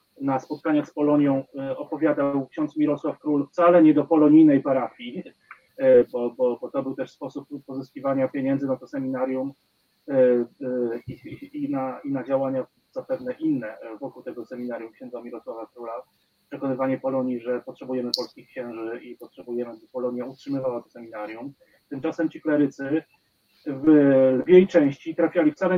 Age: 30-49